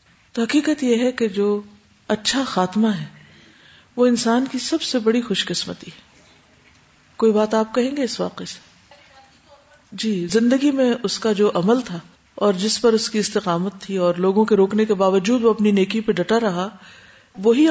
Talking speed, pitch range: 185 wpm, 190-235 Hz